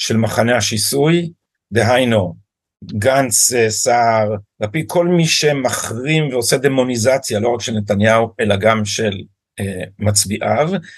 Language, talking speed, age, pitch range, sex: Hebrew, 115 wpm, 50-69, 110-155 Hz, male